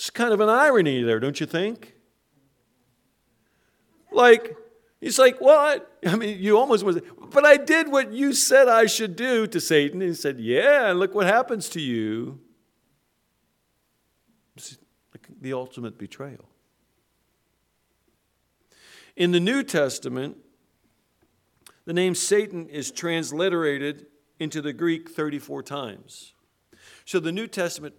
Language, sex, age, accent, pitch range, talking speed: English, male, 50-69, American, 115-190 Hz, 130 wpm